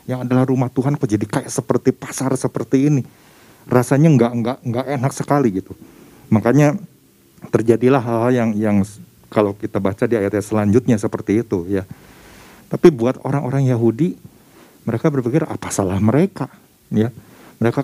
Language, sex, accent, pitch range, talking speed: Indonesian, male, native, 105-130 Hz, 145 wpm